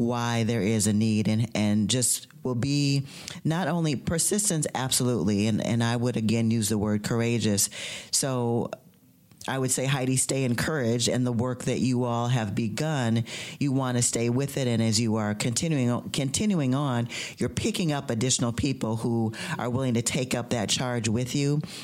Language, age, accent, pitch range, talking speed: English, 40-59, American, 115-135 Hz, 180 wpm